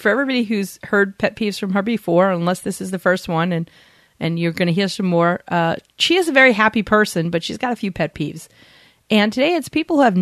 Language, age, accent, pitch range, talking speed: English, 40-59, American, 180-230 Hz, 255 wpm